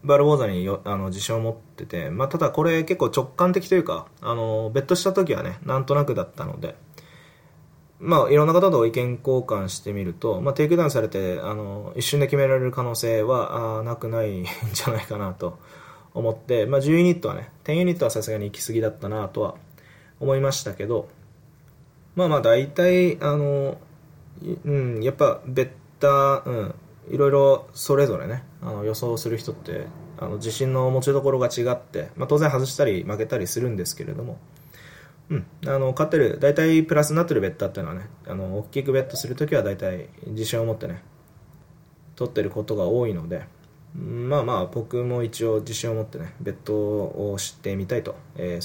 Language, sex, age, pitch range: Japanese, male, 20-39, 115-150 Hz